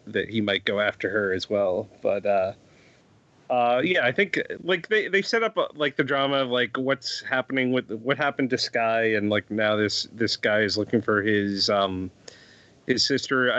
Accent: American